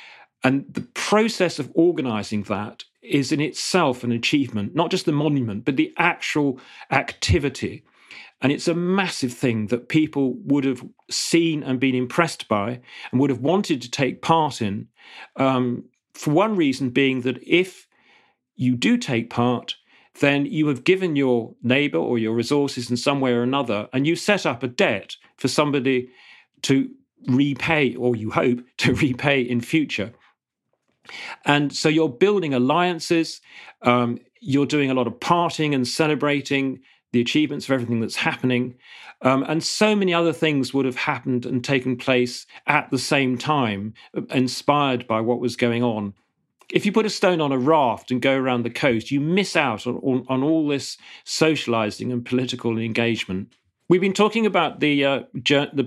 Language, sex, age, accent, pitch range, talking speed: English, male, 40-59, British, 125-155 Hz, 170 wpm